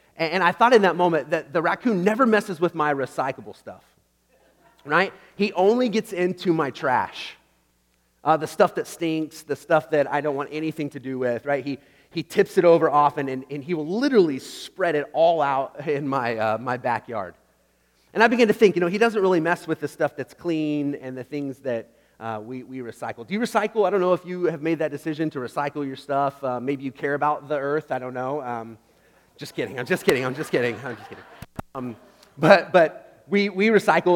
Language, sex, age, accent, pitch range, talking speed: English, male, 30-49, American, 135-175 Hz, 220 wpm